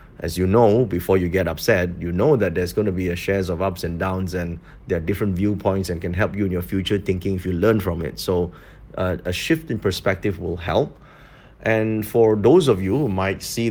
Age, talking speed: 30-49, 235 wpm